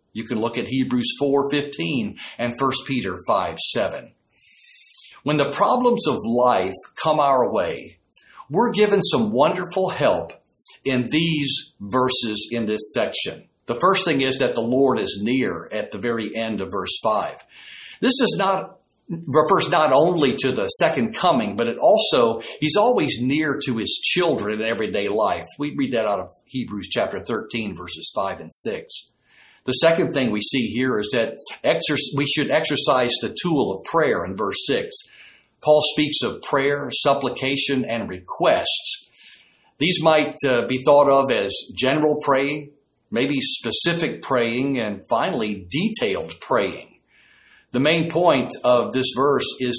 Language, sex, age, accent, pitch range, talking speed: English, male, 60-79, American, 120-165 Hz, 155 wpm